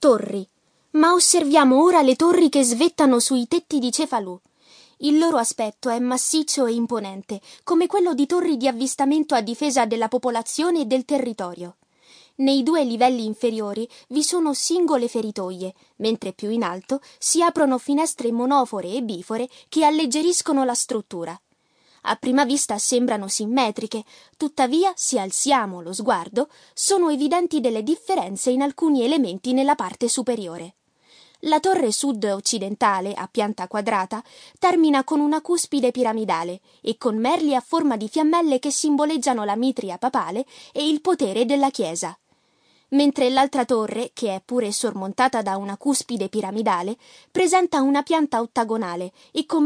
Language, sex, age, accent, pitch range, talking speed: Italian, female, 20-39, native, 225-300 Hz, 145 wpm